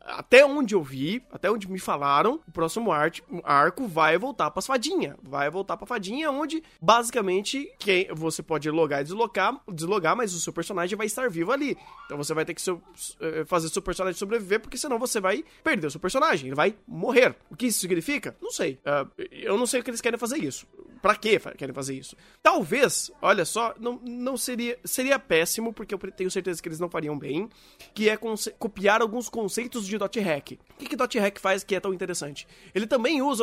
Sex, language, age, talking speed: male, Portuguese, 20-39, 210 wpm